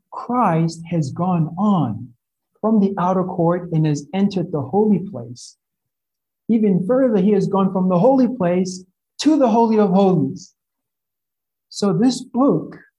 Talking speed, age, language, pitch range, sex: 145 wpm, 50-69, English, 150-205 Hz, male